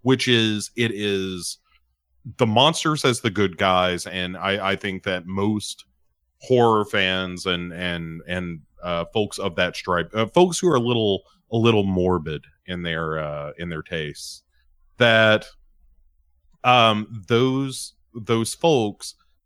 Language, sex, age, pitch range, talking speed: English, male, 30-49, 85-110 Hz, 140 wpm